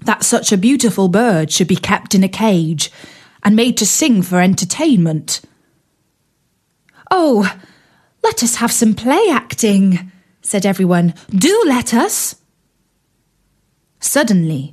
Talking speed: 120 wpm